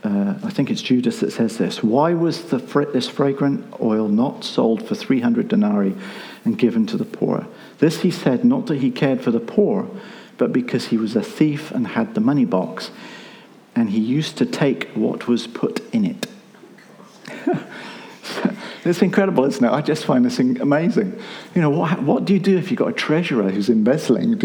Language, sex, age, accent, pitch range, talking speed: English, male, 50-69, British, 155-230 Hz, 200 wpm